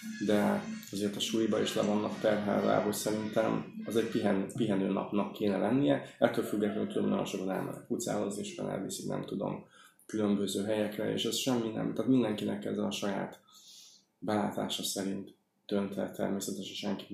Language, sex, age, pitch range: Hungarian, male, 20-39, 95-110 Hz